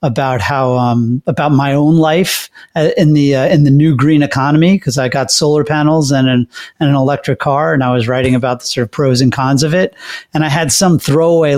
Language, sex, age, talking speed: English, male, 30-49, 230 wpm